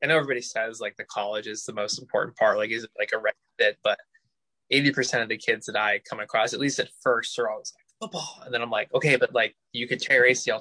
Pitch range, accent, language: 115-140 Hz, American, English